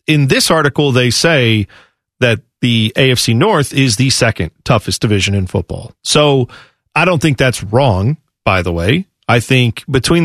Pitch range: 115-150 Hz